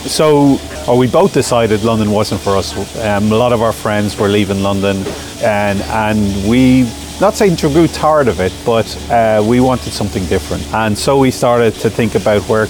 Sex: male